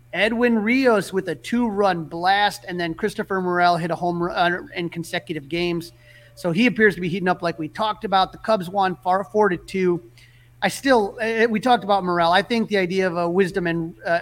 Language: English